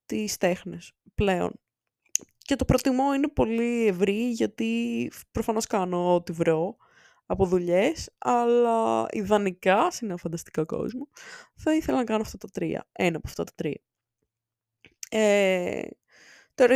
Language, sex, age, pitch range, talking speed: Greek, female, 20-39, 180-265 Hz, 130 wpm